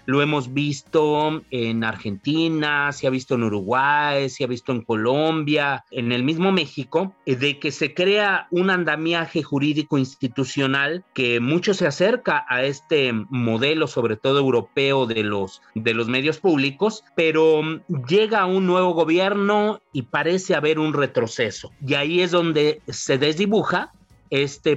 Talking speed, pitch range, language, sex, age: 145 wpm, 130-170 Hz, Spanish, male, 40-59